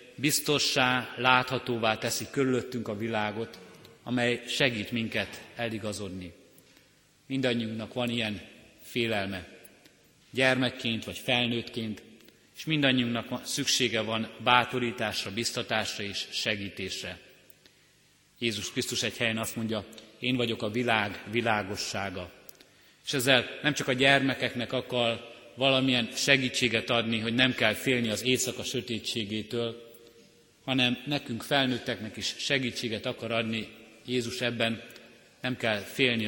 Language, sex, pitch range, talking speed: Hungarian, male, 105-125 Hz, 110 wpm